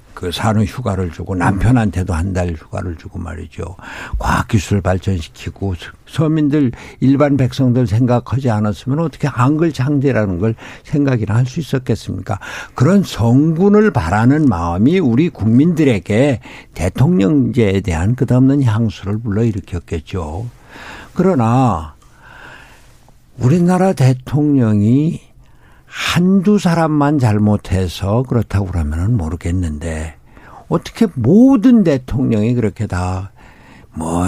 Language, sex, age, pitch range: Korean, male, 60-79, 95-135 Hz